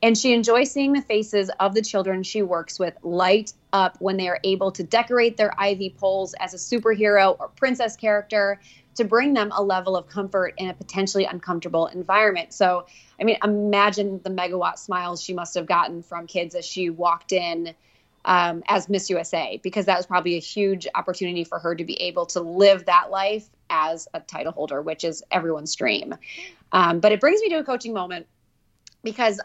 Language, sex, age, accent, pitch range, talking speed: English, female, 20-39, American, 180-215 Hz, 195 wpm